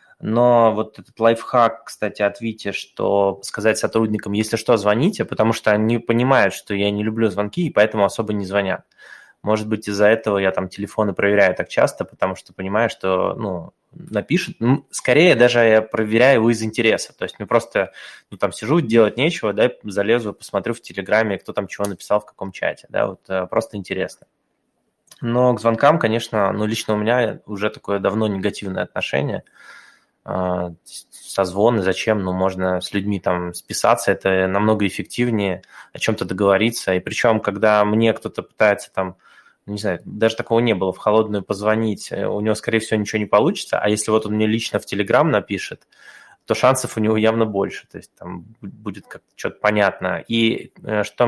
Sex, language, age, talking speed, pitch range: male, Russian, 20-39, 175 wpm, 100-115 Hz